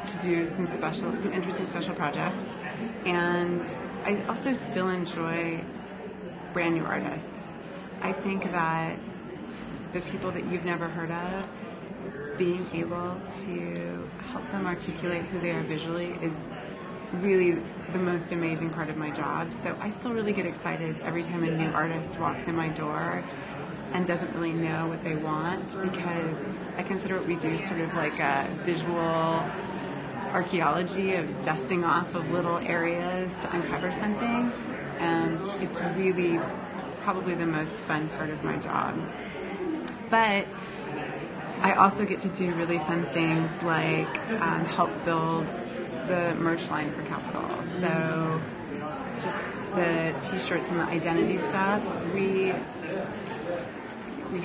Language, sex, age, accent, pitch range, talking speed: English, female, 30-49, American, 165-190 Hz, 140 wpm